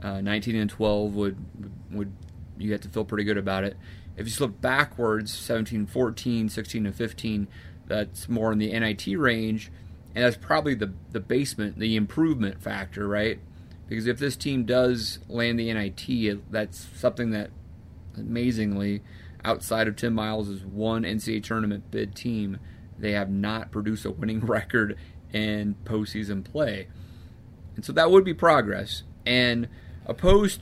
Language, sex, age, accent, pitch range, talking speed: English, male, 30-49, American, 100-115 Hz, 155 wpm